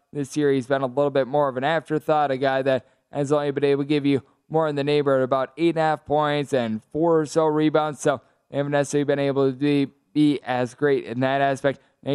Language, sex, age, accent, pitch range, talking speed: English, male, 20-39, American, 140-155 Hz, 250 wpm